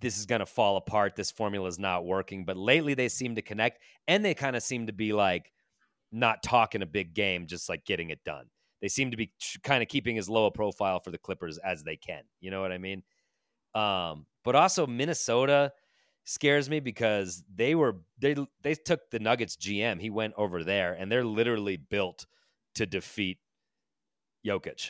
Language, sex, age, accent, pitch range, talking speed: English, male, 30-49, American, 95-120 Hz, 200 wpm